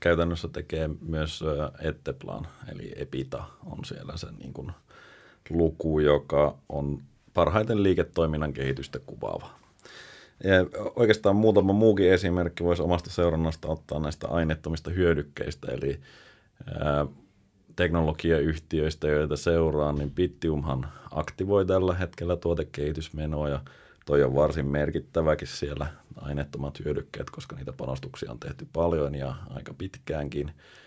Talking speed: 105 wpm